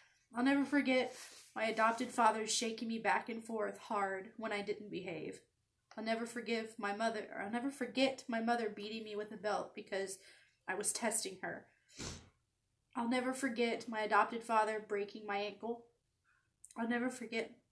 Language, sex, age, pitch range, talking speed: English, female, 20-39, 210-250 Hz, 165 wpm